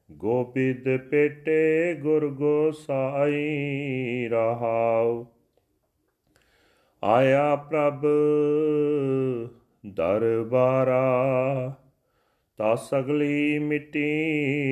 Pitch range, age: 120-145 Hz, 40-59